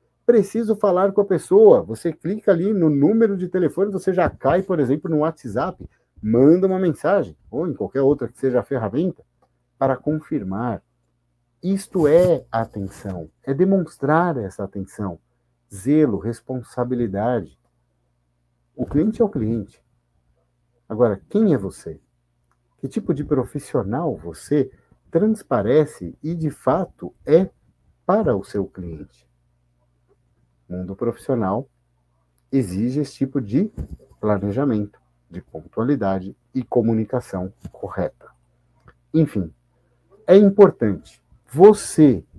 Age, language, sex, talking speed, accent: 50-69, Portuguese, male, 115 wpm, Brazilian